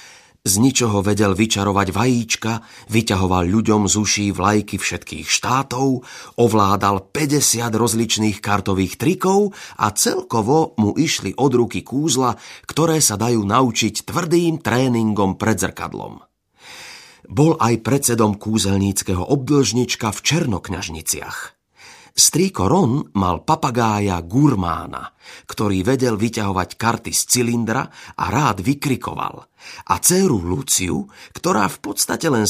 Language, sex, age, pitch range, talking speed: Slovak, male, 30-49, 100-150 Hz, 110 wpm